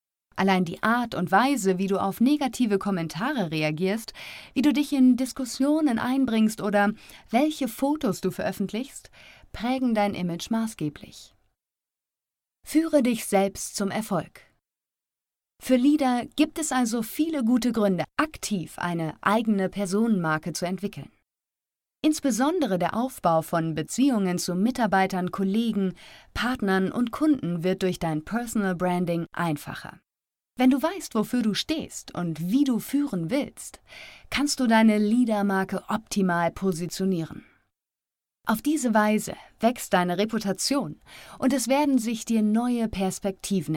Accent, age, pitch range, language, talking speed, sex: German, 30-49, 185-245 Hz, German, 125 wpm, female